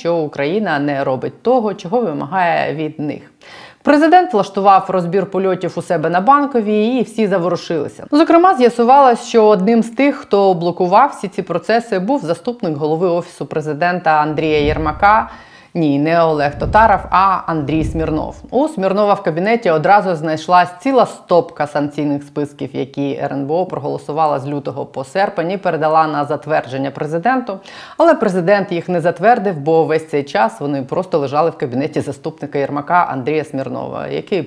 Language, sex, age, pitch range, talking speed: Ukrainian, female, 30-49, 145-195 Hz, 150 wpm